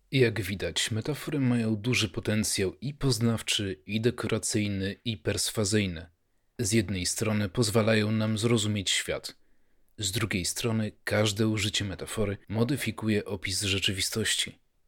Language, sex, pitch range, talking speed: Polish, male, 100-115 Hz, 115 wpm